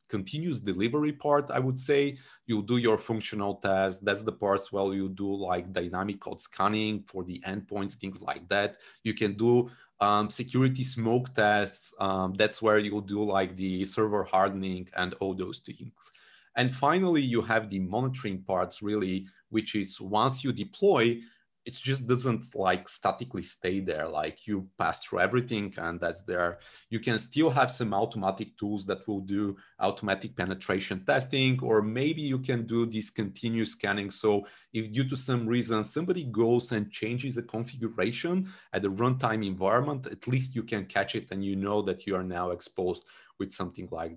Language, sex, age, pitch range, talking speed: English, male, 30-49, 95-125 Hz, 175 wpm